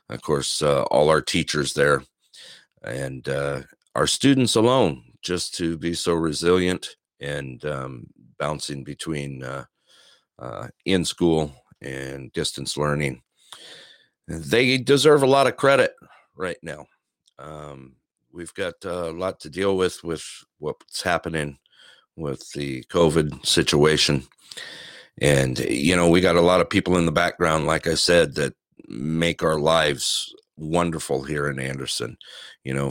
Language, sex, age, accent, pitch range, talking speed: English, male, 50-69, American, 70-85 Hz, 135 wpm